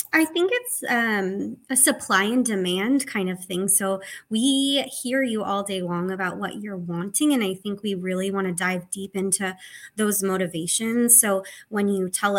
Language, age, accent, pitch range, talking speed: English, 20-39, American, 185-215 Hz, 185 wpm